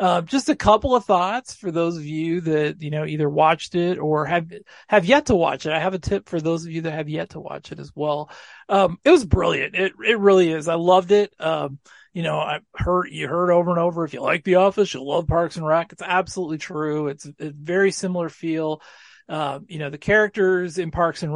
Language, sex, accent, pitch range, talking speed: English, male, American, 155-195 Hz, 245 wpm